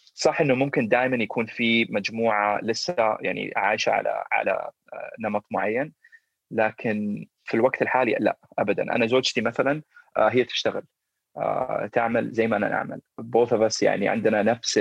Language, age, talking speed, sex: Arabic, 30-49, 145 wpm, male